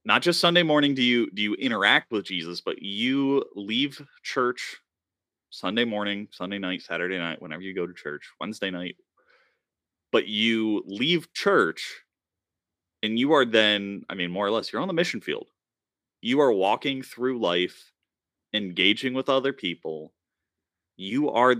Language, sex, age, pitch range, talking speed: English, male, 30-49, 90-125 Hz, 160 wpm